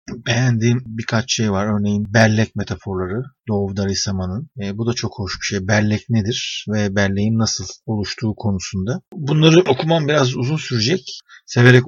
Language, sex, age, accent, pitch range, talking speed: Turkish, male, 50-69, native, 110-135 Hz, 145 wpm